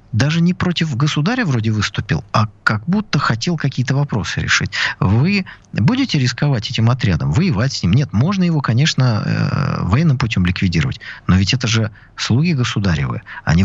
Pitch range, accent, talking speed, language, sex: 105-150 Hz, native, 165 wpm, Russian, male